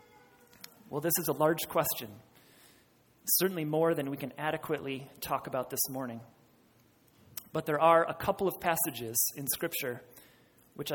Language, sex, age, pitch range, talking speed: English, male, 30-49, 135-175 Hz, 145 wpm